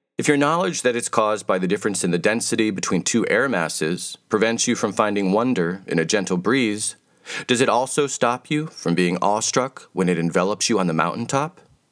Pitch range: 100-140 Hz